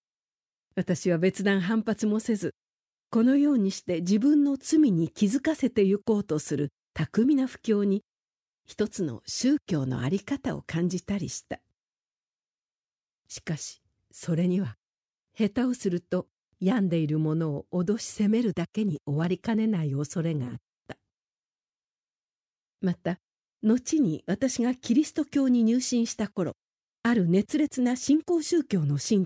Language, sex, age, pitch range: Japanese, female, 50-69, 175-245 Hz